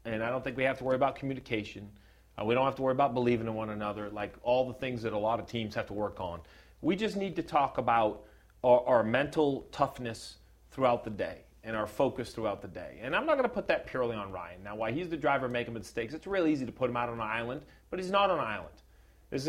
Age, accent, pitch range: 40-59, American, 115-185 Hz